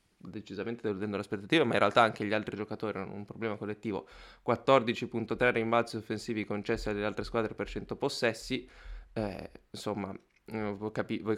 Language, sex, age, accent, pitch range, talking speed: Italian, male, 20-39, native, 105-115 Hz, 150 wpm